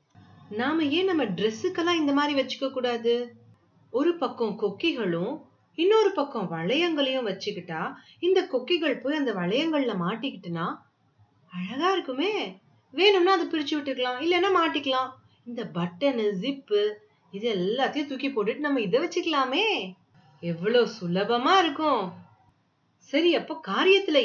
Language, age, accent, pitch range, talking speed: Tamil, 30-49, native, 190-300 Hz, 40 wpm